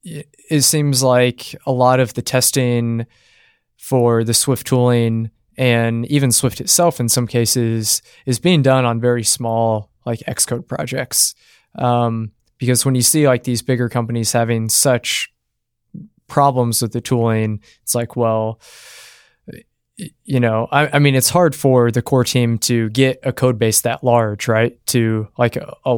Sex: male